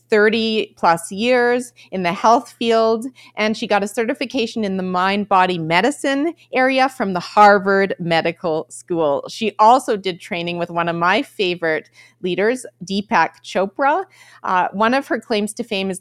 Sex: female